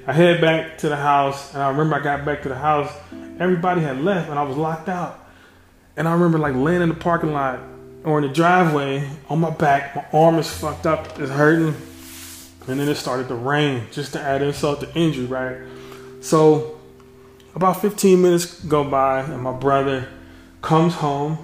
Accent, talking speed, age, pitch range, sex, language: American, 195 wpm, 20-39, 130-165 Hz, male, English